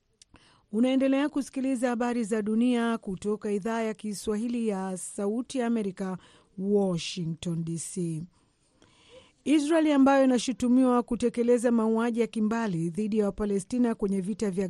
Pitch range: 195-230 Hz